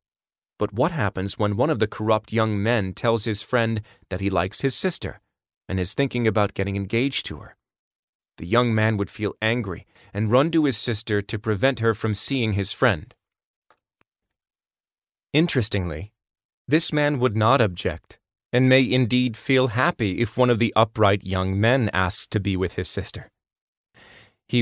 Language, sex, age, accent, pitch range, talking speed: English, male, 30-49, American, 100-125 Hz, 170 wpm